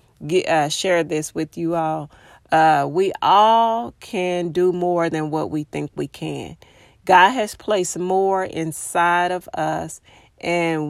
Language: English